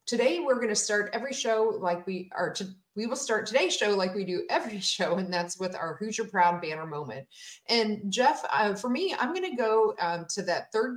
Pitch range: 170-220 Hz